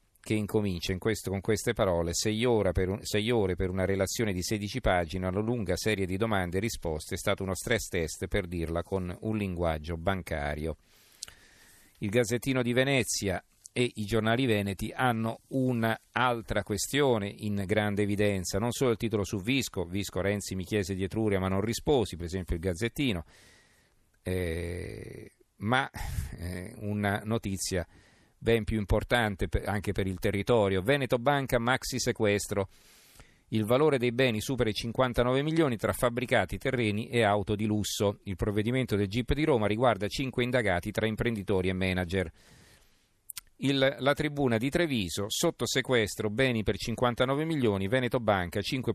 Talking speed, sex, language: 150 wpm, male, Italian